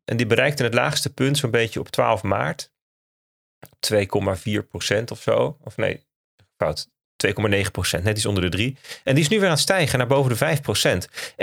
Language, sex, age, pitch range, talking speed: Dutch, male, 40-59, 110-140 Hz, 195 wpm